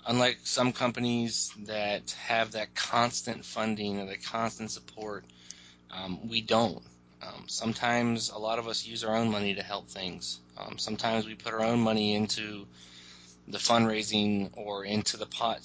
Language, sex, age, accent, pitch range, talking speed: English, male, 20-39, American, 95-115 Hz, 160 wpm